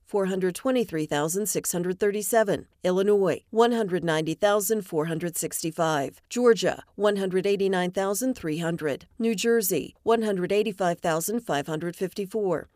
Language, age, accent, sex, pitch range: English, 40-59, American, female, 175-220 Hz